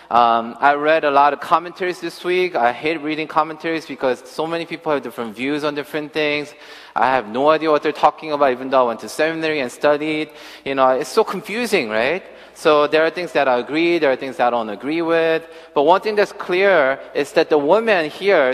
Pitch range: 140-180 Hz